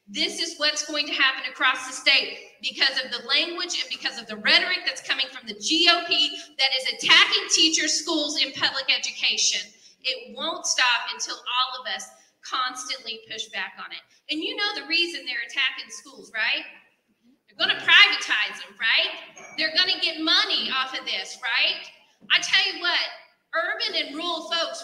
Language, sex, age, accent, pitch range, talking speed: English, female, 40-59, American, 265-340 Hz, 180 wpm